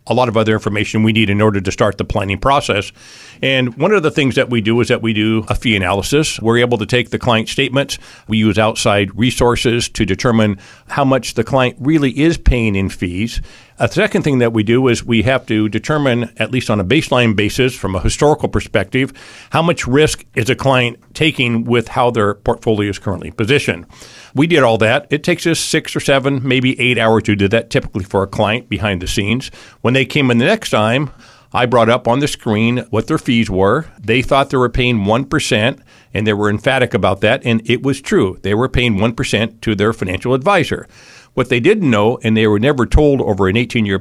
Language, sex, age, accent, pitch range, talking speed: English, male, 50-69, American, 110-135 Hz, 220 wpm